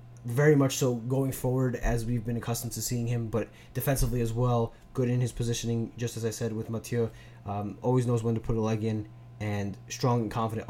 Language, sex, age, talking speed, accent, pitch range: English, male, 20-39, 215 wpm, American, 110-130 Hz